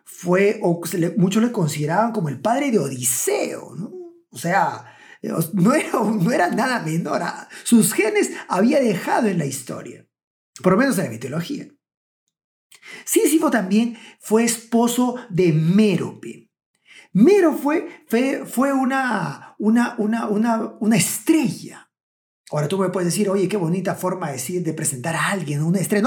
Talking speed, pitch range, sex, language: 150 wpm, 185-260 Hz, male, Spanish